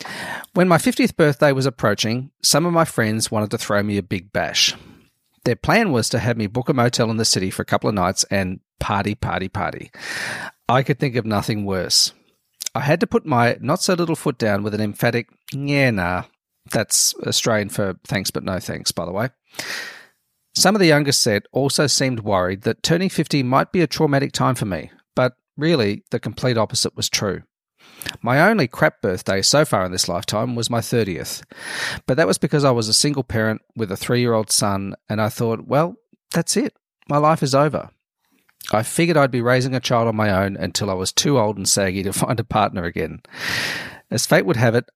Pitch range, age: 105-145 Hz, 40-59